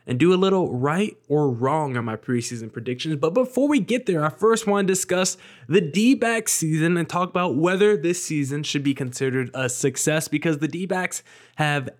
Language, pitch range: English, 140-185 Hz